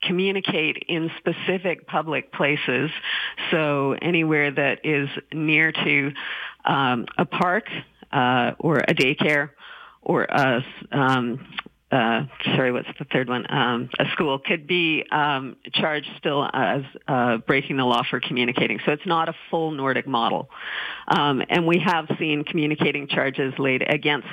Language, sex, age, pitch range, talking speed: English, female, 50-69, 135-165 Hz, 140 wpm